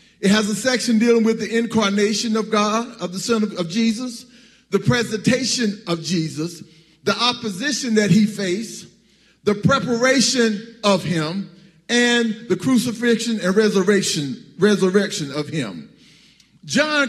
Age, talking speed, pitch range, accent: 40-59, 135 wpm, 200-245 Hz, American